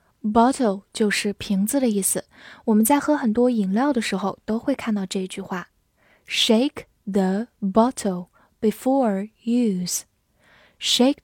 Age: 10-29